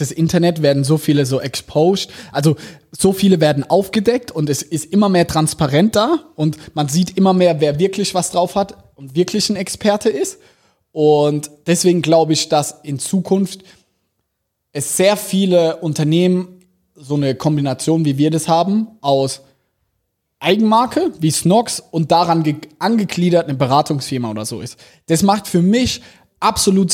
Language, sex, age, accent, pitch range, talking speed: German, male, 20-39, German, 145-180 Hz, 150 wpm